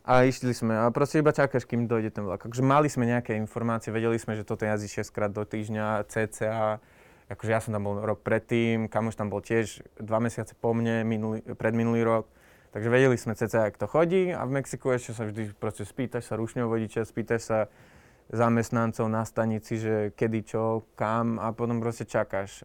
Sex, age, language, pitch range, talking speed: male, 20-39, Slovak, 110-120 Hz, 195 wpm